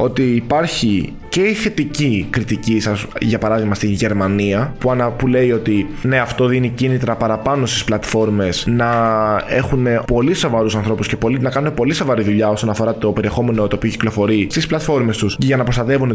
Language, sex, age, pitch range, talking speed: Greek, male, 20-39, 105-130 Hz, 180 wpm